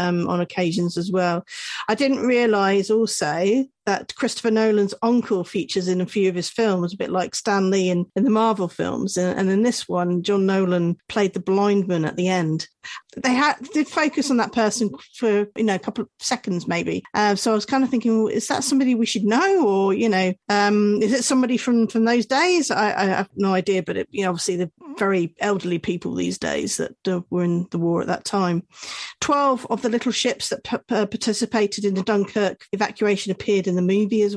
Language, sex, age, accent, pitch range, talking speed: English, female, 40-59, British, 185-230 Hz, 215 wpm